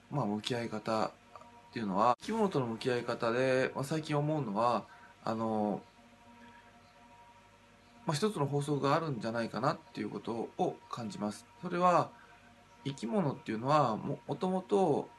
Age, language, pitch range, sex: 20-39, Japanese, 115-140 Hz, male